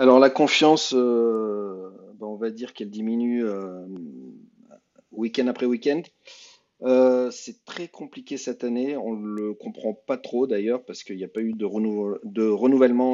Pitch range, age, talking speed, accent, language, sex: 105-130 Hz, 40-59, 155 wpm, French, French, male